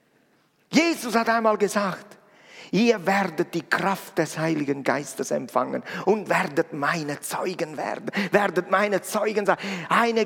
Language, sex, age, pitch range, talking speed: German, male, 40-59, 155-210 Hz, 130 wpm